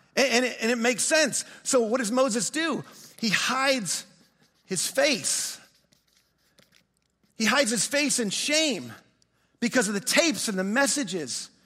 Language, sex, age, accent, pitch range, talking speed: English, male, 40-59, American, 210-265 Hz, 135 wpm